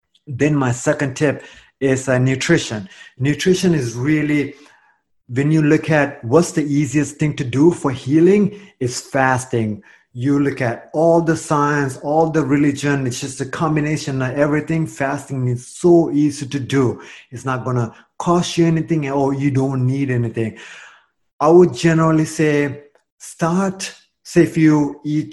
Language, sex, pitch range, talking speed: English, male, 130-160 Hz, 155 wpm